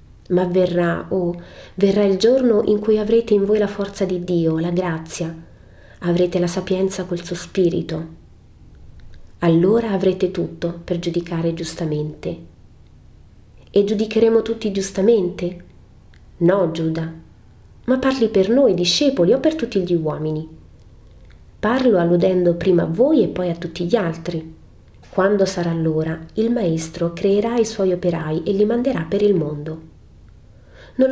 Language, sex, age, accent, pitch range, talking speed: Italian, female, 30-49, native, 160-205 Hz, 140 wpm